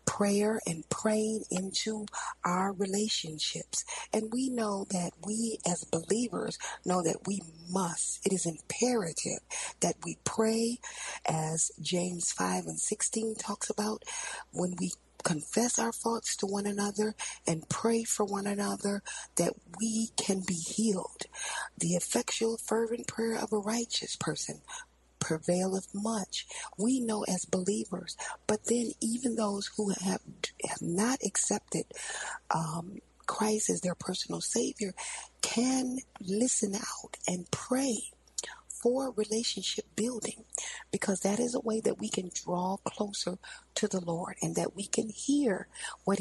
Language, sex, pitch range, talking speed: English, female, 185-230 Hz, 135 wpm